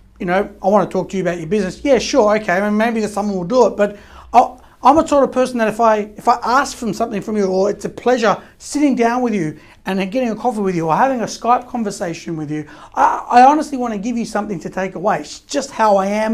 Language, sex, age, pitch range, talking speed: English, male, 30-49, 195-240 Hz, 260 wpm